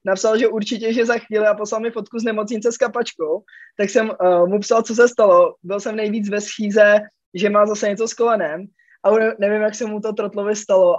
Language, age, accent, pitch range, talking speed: Czech, 20-39, native, 175-210 Hz, 225 wpm